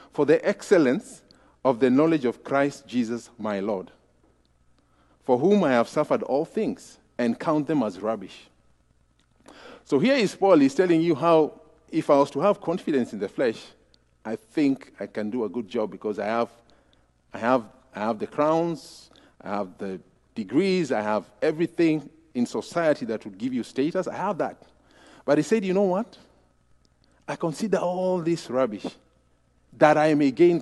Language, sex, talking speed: English, male, 170 wpm